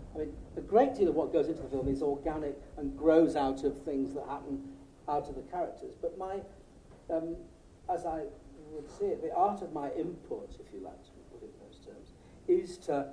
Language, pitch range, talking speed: English, 140-195 Hz, 220 wpm